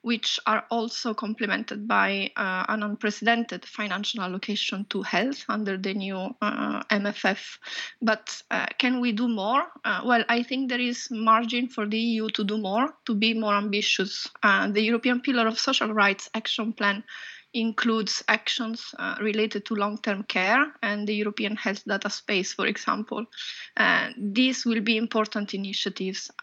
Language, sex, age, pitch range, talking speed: English, female, 20-39, 210-245 Hz, 160 wpm